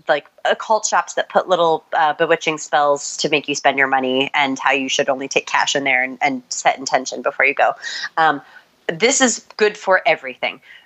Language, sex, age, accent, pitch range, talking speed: English, female, 30-49, American, 155-220 Hz, 205 wpm